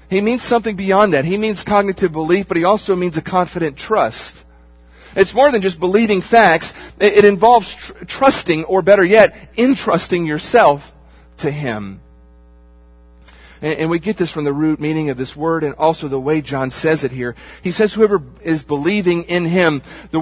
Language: English